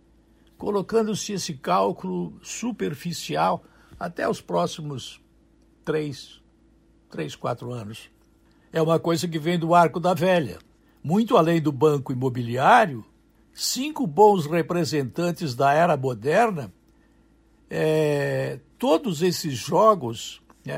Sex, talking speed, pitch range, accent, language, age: male, 100 wpm, 135-175 Hz, Brazilian, Portuguese, 60-79